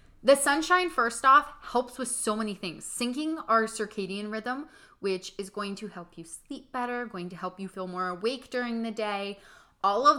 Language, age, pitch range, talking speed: English, 20-39, 190-240 Hz, 195 wpm